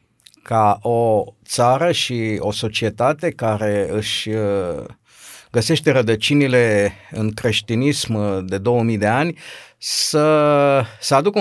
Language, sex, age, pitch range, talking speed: Romanian, male, 50-69, 105-140 Hz, 100 wpm